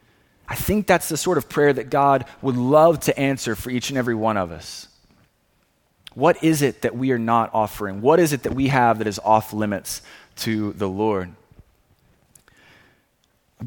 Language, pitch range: English, 115-155 Hz